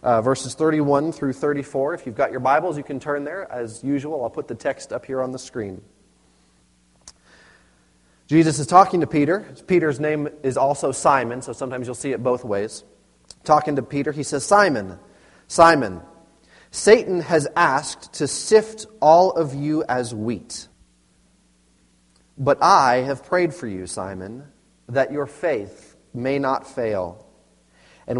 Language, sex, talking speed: English, male, 155 wpm